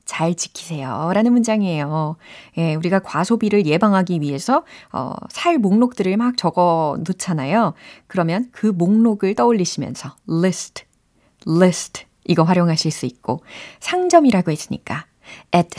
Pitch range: 170-275 Hz